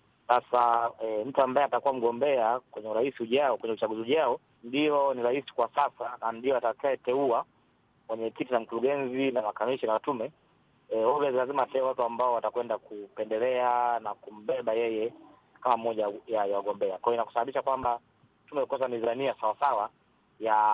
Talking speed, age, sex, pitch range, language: 150 wpm, 30-49, male, 115-140 Hz, Swahili